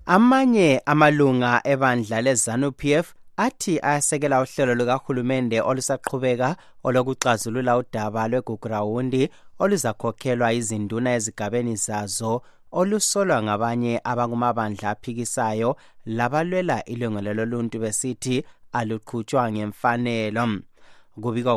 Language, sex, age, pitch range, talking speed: English, male, 30-49, 110-125 Hz, 105 wpm